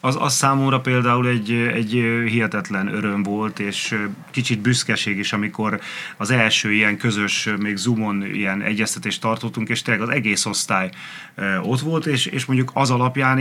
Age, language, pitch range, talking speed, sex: 30-49, Hungarian, 110-130 Hz, 155 wpm, male